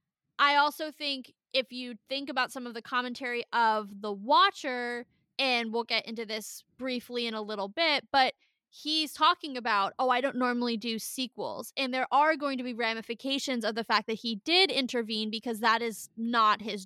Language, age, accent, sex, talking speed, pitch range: English, 20-39, American, female, 190 wpm, 225-265 Hz